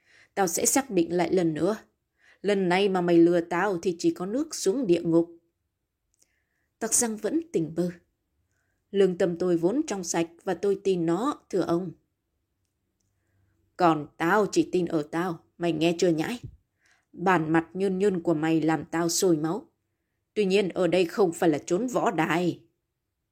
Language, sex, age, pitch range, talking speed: Vietnamese, female, 20-39, 165-215 Hz, 170 wpm